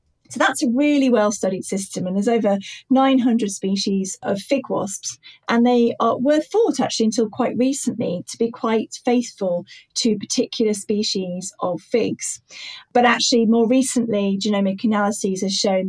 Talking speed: 150 wpm